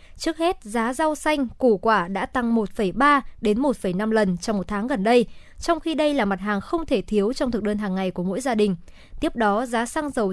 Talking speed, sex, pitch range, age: 240 wpm, male, 210-275 Hz, 20-39